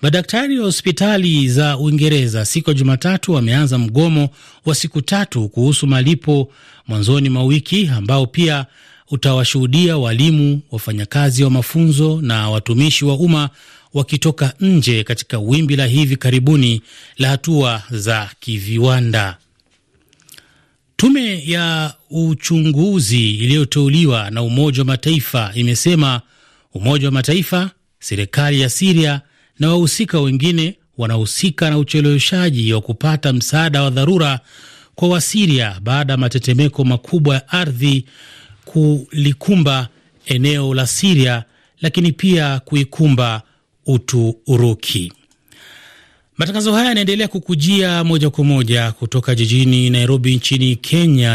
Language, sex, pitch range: Swahili, male, 125-160 Hz